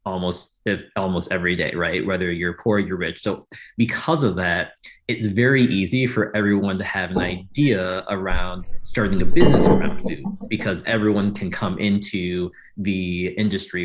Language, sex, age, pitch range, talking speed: English, male, 20-39, 90-115 Hz, 160 wpm